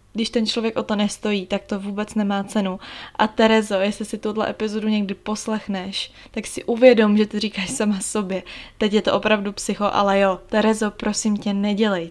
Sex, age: female, 20-39